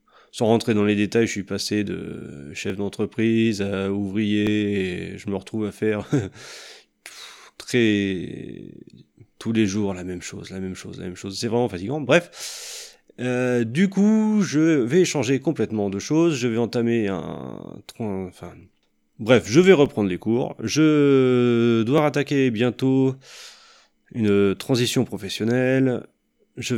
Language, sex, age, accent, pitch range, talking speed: French, male, 30-49, French, 100-135 Hz, 145 wpm